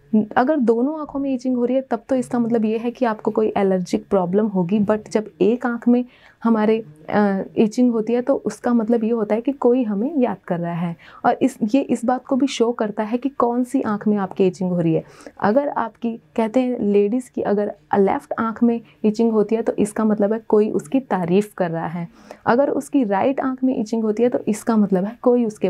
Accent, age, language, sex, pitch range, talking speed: native, 30-49, Hindi, female, 200-250 Hz, 235 wpm